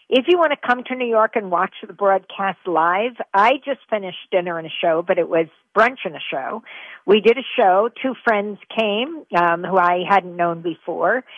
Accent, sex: American, female